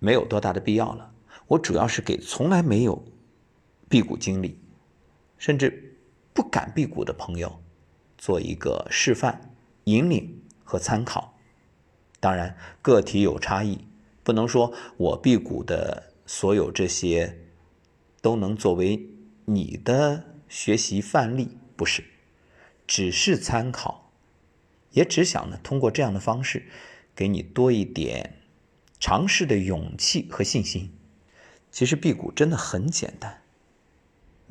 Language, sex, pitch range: Chinese, male, 85-125 Hz